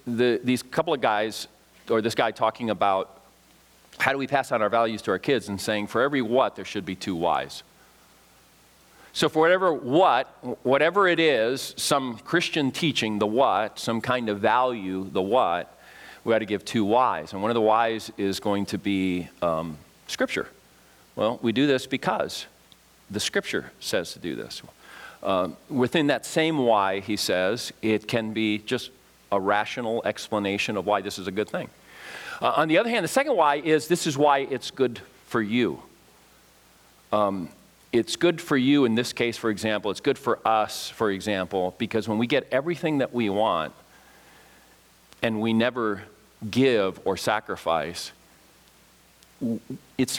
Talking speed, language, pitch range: 170 wpm, English, 105-130 Hz